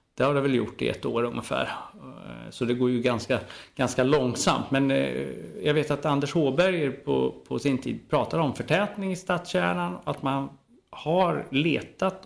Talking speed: 170 wpm